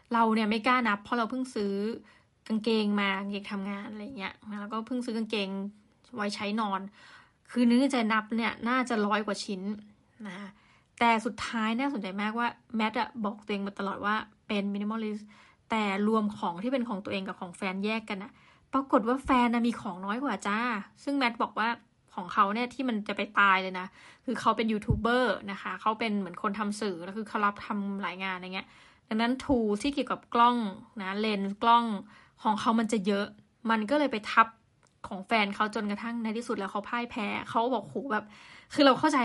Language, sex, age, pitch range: Thai, female, 20-39, 205-240 Hz